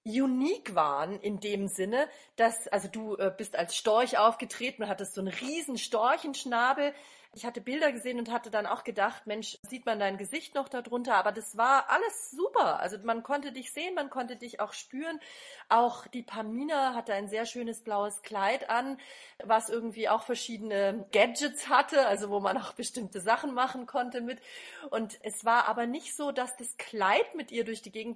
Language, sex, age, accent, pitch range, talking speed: German, female, 40-59, German, 210-270 Hz, 190 wpm